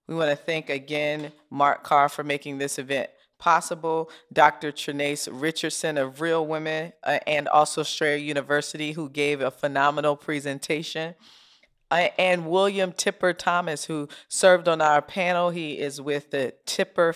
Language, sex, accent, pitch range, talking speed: English, female, American, 145-170 Hz, 150 wpm